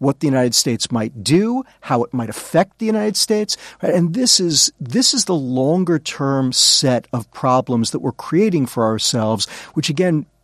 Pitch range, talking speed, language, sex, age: 125-180 Hz, 170 wpm, English, male, 40-59